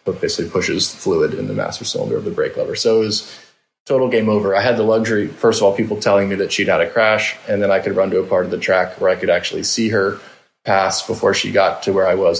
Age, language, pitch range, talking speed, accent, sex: 20-39, English, 100-120 Hz, 280 wpm, American, male